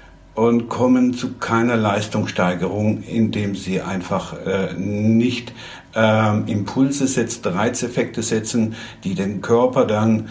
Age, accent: 60-79, German